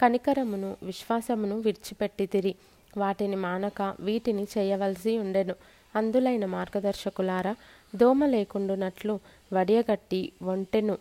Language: Telugu